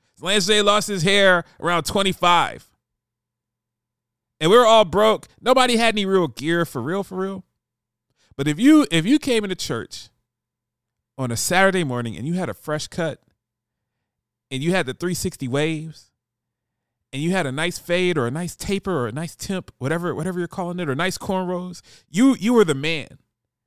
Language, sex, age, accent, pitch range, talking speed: English, male, 40-59, American, 120-185 Hz, 185 wpm